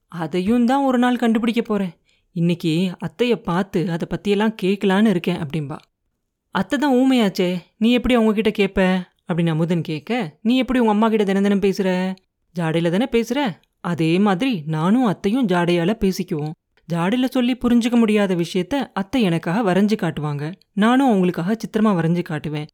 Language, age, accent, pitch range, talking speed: Tamil, 30-49, native, 175-220 Hz, 150 wpm